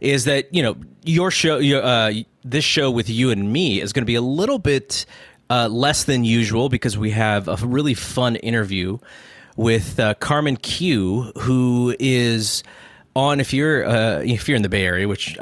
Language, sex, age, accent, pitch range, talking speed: English, male, 30-49, American, 105-135 Hz, 185 wpm